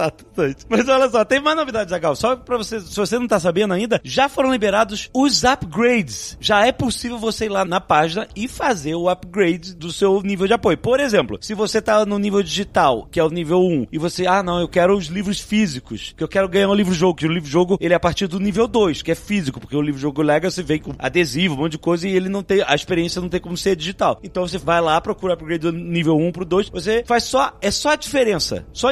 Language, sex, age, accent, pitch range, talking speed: Portuguese, male, 30-49, Brazilian, 175-225 Hz, 260 wpm